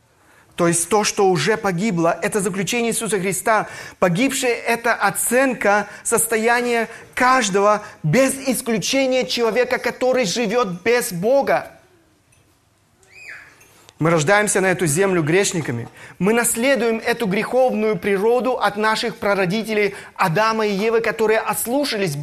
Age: 30-49